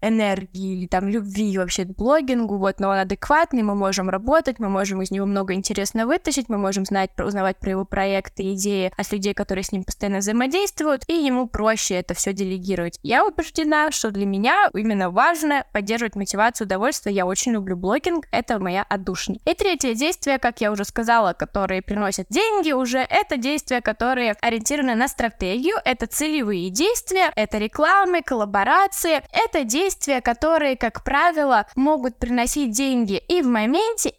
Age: 10-29